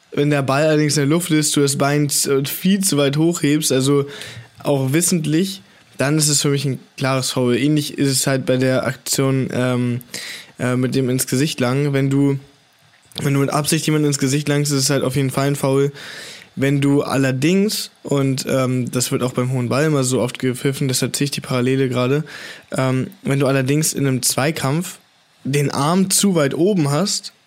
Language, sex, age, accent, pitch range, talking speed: German, male, 10-29, German, 130-150 Hz, 200 wpm